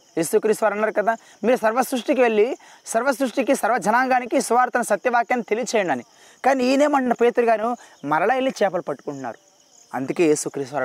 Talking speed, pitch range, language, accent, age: 115 wpm, 140-200 Hz, Telugu, native, 20-39